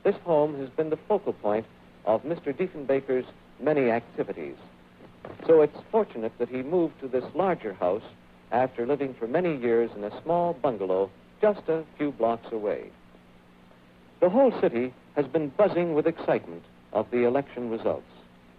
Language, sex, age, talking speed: English, male, 60-79, 155 wpm